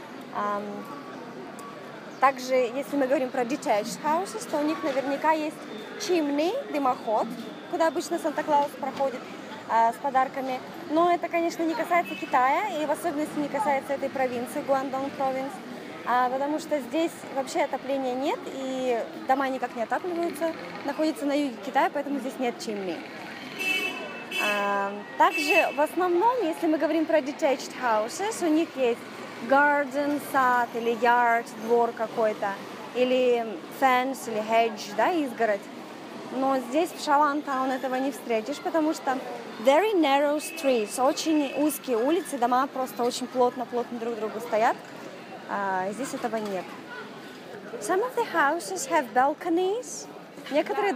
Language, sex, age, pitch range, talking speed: Russian, female, 20-39, 245-310 Hz, 135 wpm